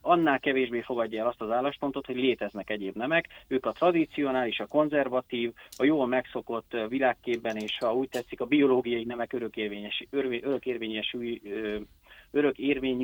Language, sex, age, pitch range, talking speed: Hungarian, male, 30-49, 120-150 Hz, 130 wpm